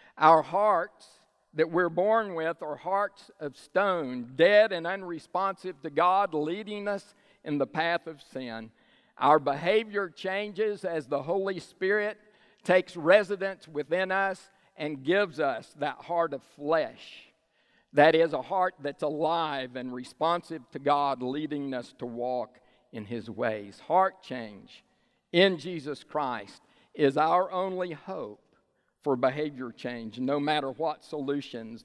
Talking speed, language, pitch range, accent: 140 wpm, English, 135-185 Hz, American